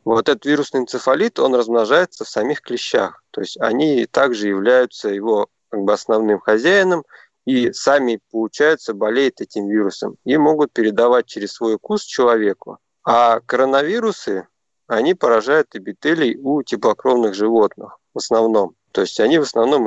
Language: Russian